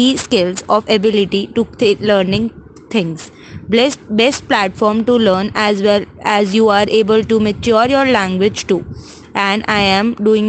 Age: 20-39